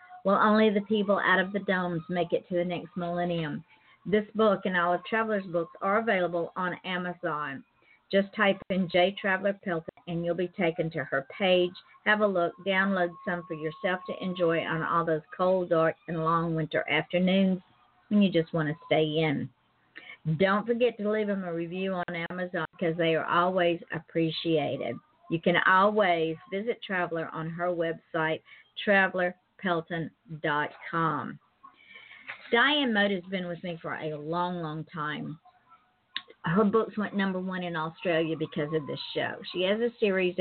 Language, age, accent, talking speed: English, 50-69, American, 170 wpm